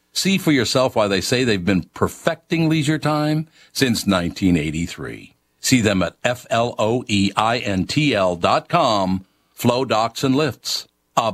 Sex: male